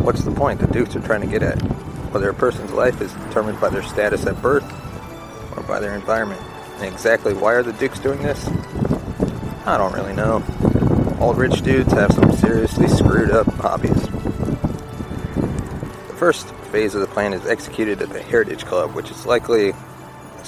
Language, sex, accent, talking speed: English, male, American, 180 wpm